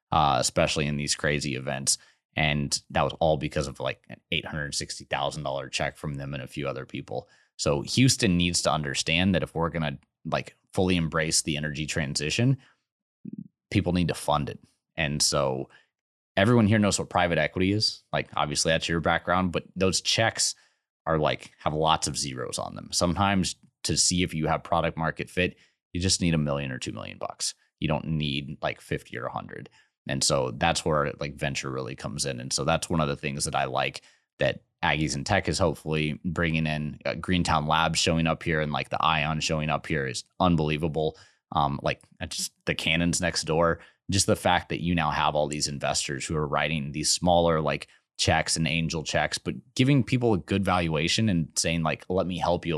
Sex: male